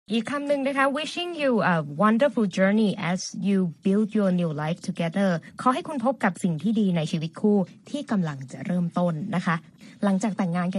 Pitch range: 175-225 Hz